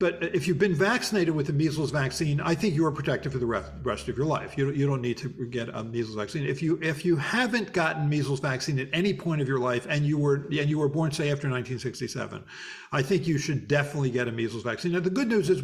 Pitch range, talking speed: 130-165 Hz, 270 wpm